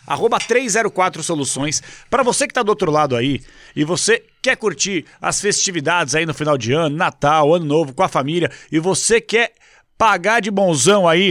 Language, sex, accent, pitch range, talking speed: Portuguese, male, Brazilian, 170-225 Hz, 185 wpm